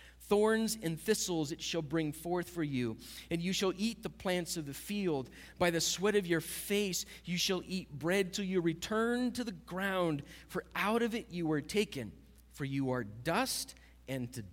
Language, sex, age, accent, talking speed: English, male, 40-59, American, 195 wpm